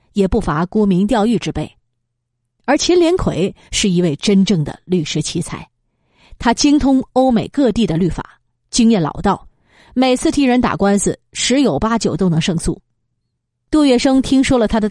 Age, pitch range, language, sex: 30-49, 160-235 Hz, Chinese, female